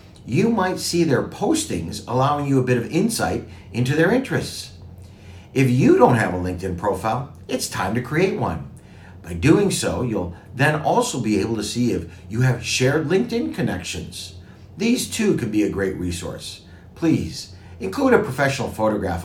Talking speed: 170 wpm